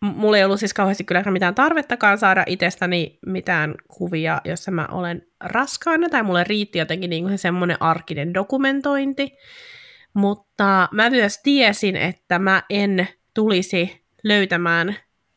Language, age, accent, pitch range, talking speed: Finnish, 20-39, native, 175-220 Hz, 130 wpm